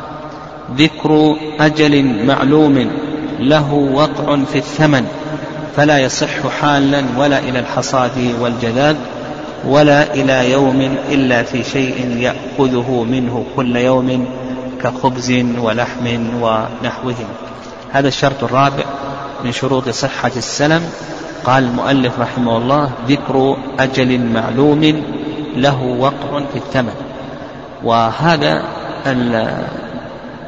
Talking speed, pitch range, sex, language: 95 wpm, 125-145 Hz, male, Arabic